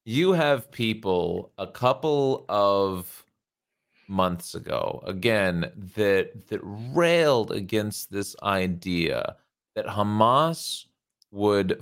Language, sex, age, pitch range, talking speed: English, male, 30-49, 100-140 Hz, 90 wpm